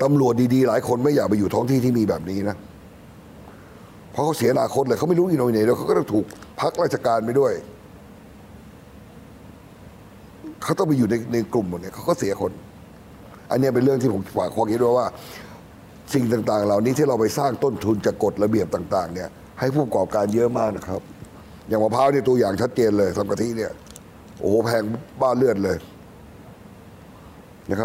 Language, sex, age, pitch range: Thai, male, 60-79, 105-135 Hz